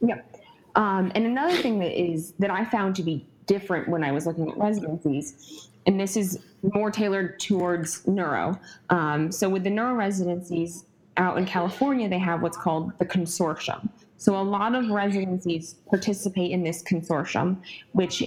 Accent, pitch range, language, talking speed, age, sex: American, 165-200 Hz, English, 170 wpm, 20-39, female